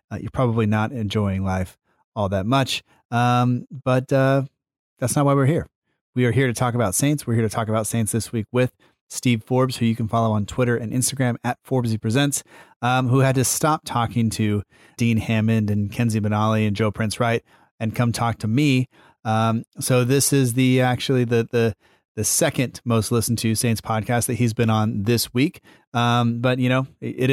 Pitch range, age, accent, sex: 110-130 Hz, 30-49, American, male